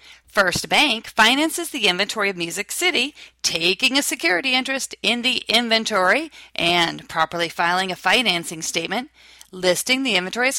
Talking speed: 140 wpm